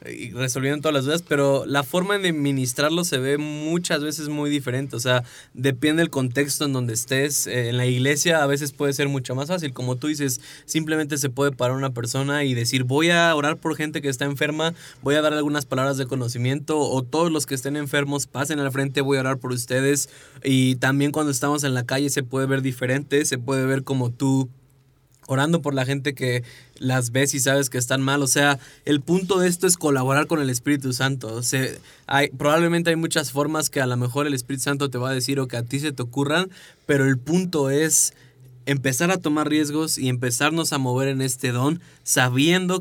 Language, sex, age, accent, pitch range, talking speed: Spanish, male, 20-39, Mexican, 130-150 Hz, 215 wpm